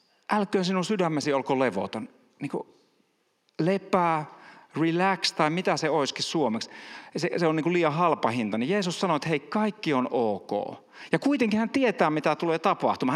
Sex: male